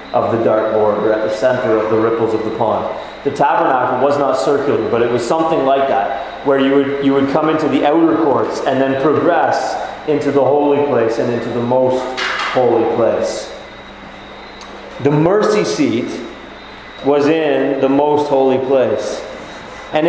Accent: American